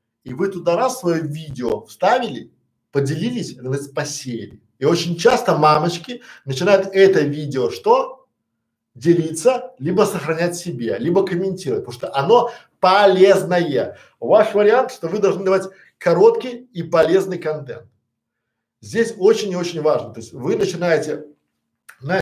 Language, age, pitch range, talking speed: Russian, 50-69, 125-190 Hz, 125 wpm